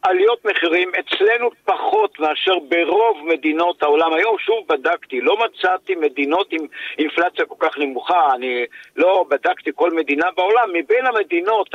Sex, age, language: male, 50-69, Hebrew